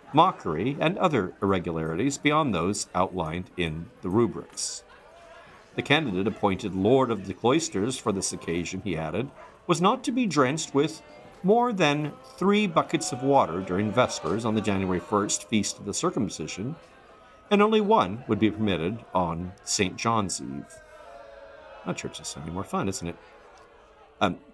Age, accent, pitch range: 50-69, American, 95-150 Hz